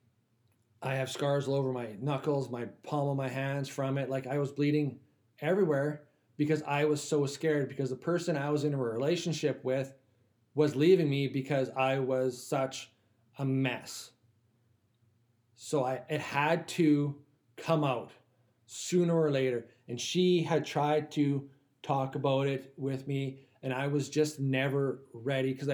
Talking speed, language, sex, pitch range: 160 wpm, English, male, 125-150 Hz